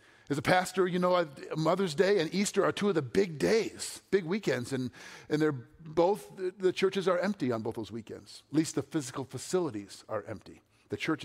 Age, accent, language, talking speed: 50-69, American, English, 205 wpm